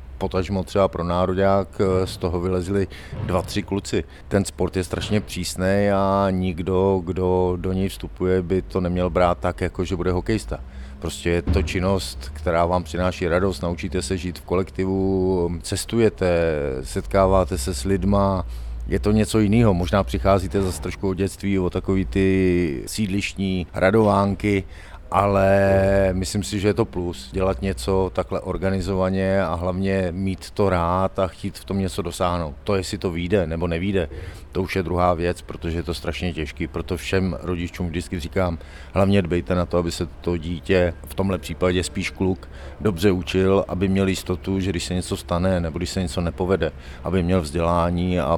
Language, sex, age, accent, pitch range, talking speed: Czech, male, 50-69, native, 85-95 Hz, 170 wpm